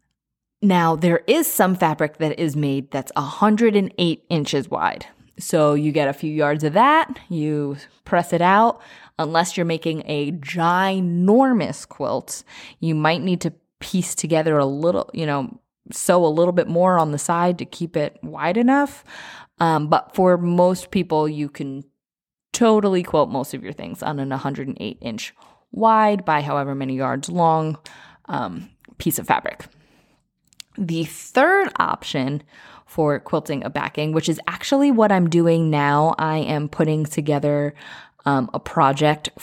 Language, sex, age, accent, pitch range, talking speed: English, female, 20-39, American, 145-175 Hz, 155 wpm